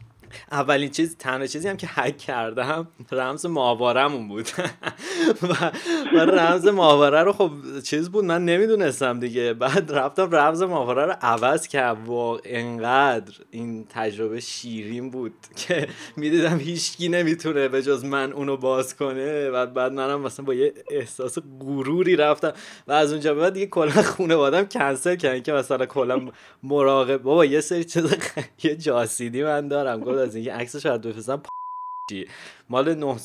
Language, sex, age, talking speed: Persian, male, 20-39, 155 wpm